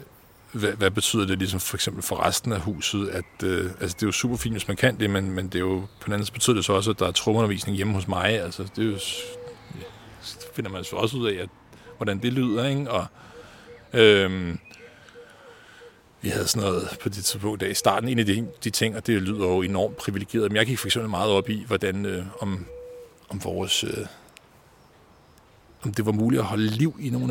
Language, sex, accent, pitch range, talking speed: Danish, male, native, 100-125 Hz, 225 wpm